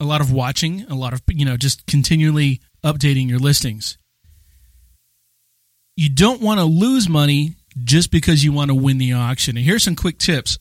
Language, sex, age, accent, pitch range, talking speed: English, male, 40-59, American, 130-170 Hz, 185 wpm